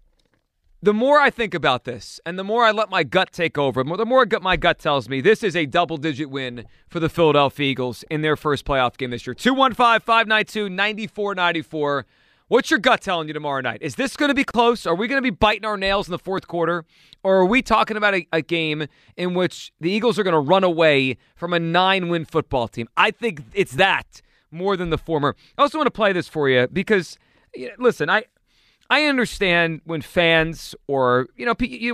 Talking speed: 215 wpm